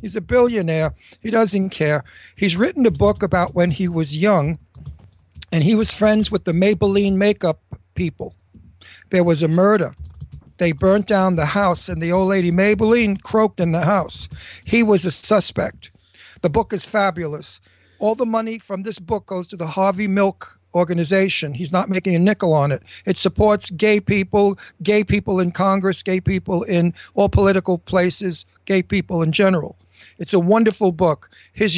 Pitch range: 170-210 Hz